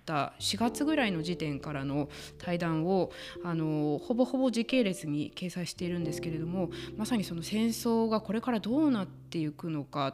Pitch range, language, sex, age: 160-215 Hz, Japanese, female, 20-39